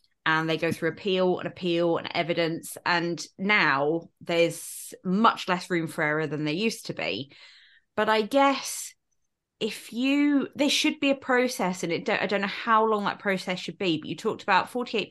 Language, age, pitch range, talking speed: English, 20-39, 165-200 Hz, 185 wpm